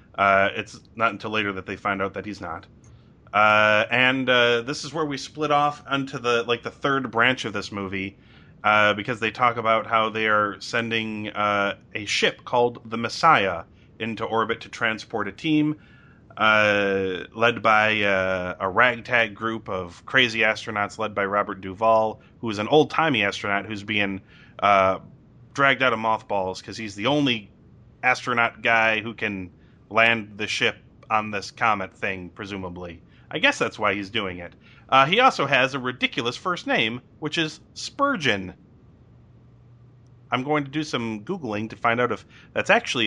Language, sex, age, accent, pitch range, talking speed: English, male, 30-49, American, 105-130 Hz, 170 wpm